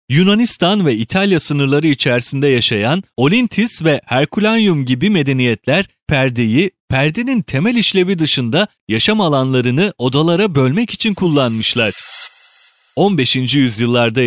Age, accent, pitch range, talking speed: 30-49, native, 125-175 Hz, 100 wpm